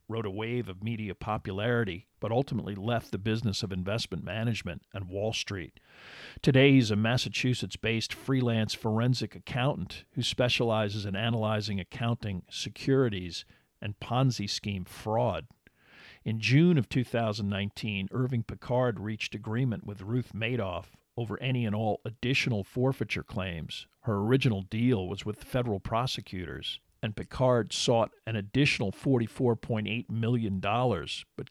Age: 50-69